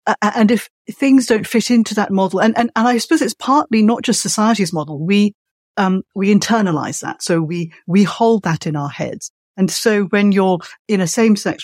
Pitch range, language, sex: 160-215 Hz, English, female